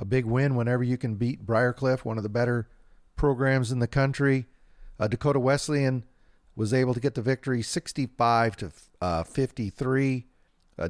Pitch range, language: 115-140 Hz, English